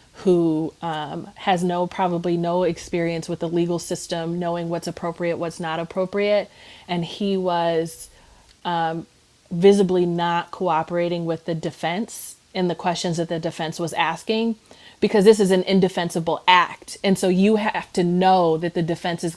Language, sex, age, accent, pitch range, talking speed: English, female, 30-49, American, 165-185 Hz, 160 wpm